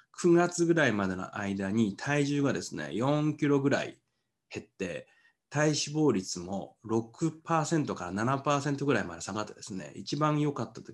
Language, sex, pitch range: Japanese, male, 100-145 Hz